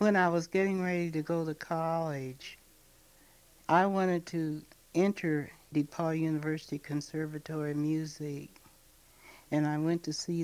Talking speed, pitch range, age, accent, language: 130 wpm, 140-155 Hz, 60-79, American, English